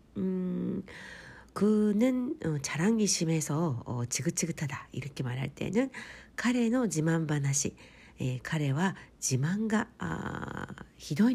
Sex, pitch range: female, 140-195 Hz